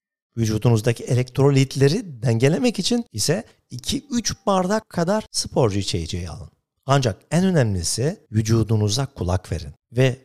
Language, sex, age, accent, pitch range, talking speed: Turkish, male, 50-69, native, 100-140 Hz, 105 wpm